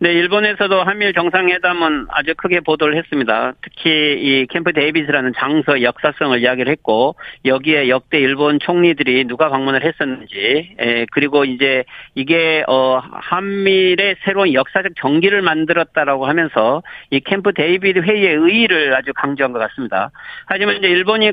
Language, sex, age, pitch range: Korean, male, 40-59, 140-195 Hz